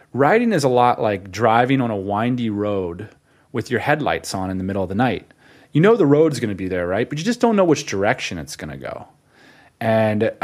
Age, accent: 30-49, American